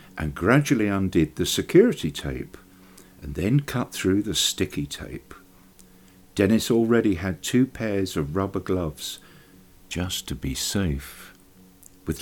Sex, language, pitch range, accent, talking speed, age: male, English, 90-105 Hz, British, 130 wpm, 50-69